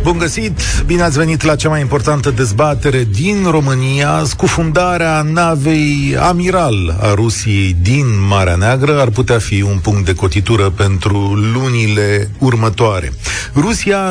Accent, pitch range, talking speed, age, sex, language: native, 105-155 Hz, 130 wpm, 40-59, male, Romanian